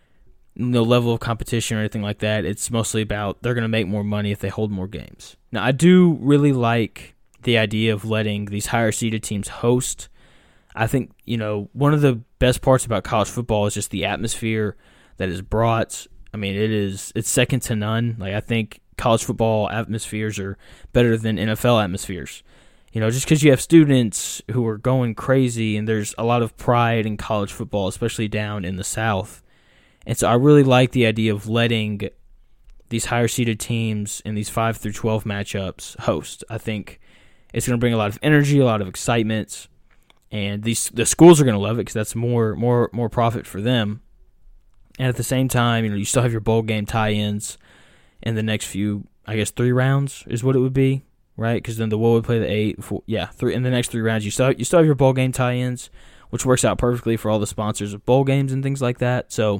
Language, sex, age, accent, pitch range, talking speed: English, male, 10-29, American, 105-120 Hz, 215 wpm